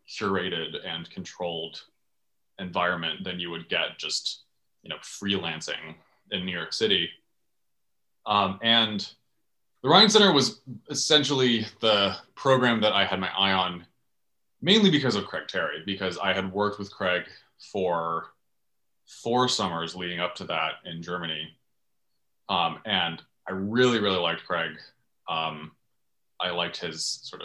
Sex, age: male, 20-39